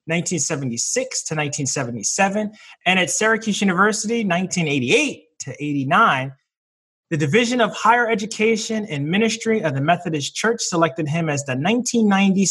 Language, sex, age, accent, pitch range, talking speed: English, male, 30-49, American, 145-210 Hz, 125 wpm